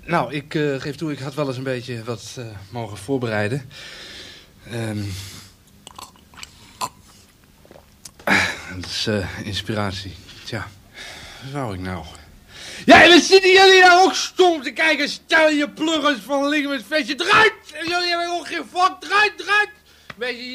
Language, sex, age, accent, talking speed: Dutch, male, 60-79, Dutch, 165 wpm